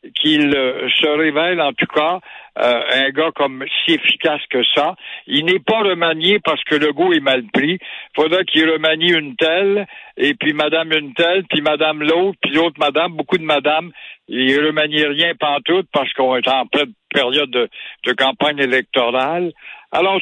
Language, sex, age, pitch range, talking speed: French, male, 60-79, 150-195 Hz, 190 wpm